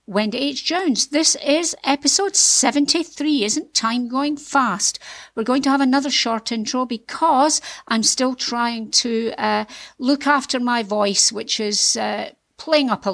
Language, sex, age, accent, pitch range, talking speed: English, female, 50-69, British, 220-285 Hz, 155 wpm